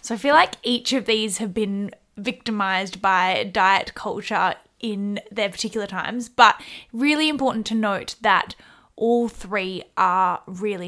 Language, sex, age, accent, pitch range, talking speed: English, female, 10-29, Australian, 205-255 Hz, 150 wpm